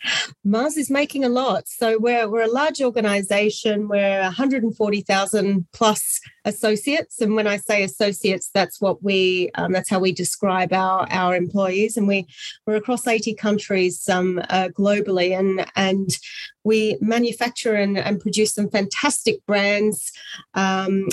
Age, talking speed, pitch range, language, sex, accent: 30-49, 145 wpm, 185-230 Hz, English, female, Australian